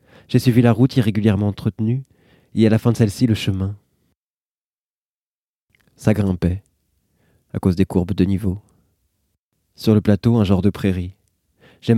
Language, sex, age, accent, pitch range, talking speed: French, male, 20-39, French, 95-115 Hz, 150 wpm